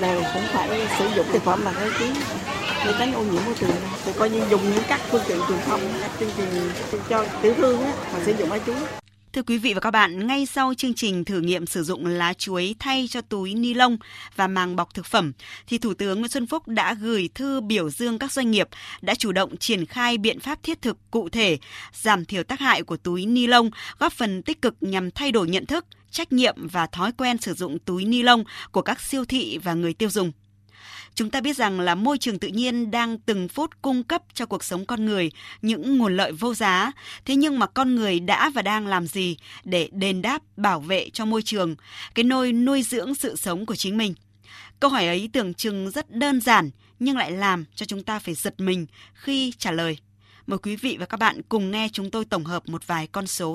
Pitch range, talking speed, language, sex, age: 175-240 Hz, 235 wpm, Vietnamese, female, 20-39